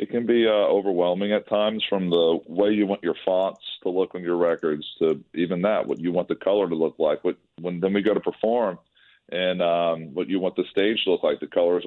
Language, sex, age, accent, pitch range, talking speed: English, male, 40-59, American, 85-115 Hz, 250 wpm